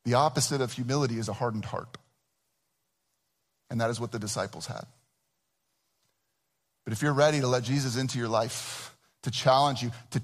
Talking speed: 170 wpm